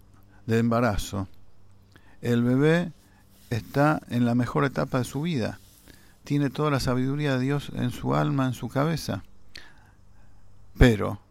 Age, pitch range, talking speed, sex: 50-69, 100-120 Hz, 135 wpm, male